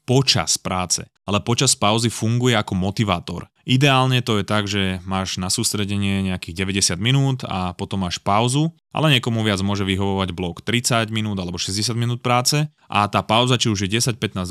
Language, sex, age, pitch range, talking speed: Slovak, male, 20-39, 95-120 Hz, 180 wpm